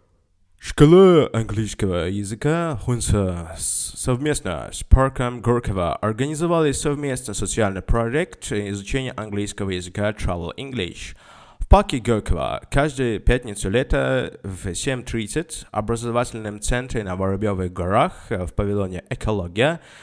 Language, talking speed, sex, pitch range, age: Russian, 100 wpm, male, 95-140 Hz, 20-39